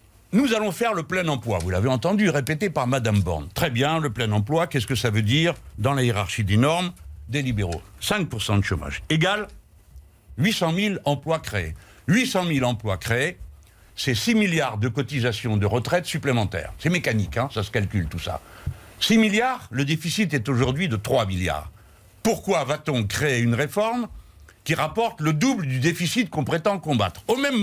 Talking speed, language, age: 180 wpm, French, 60-79